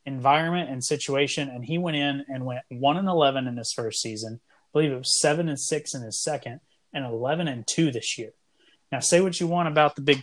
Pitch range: 130-155 Hz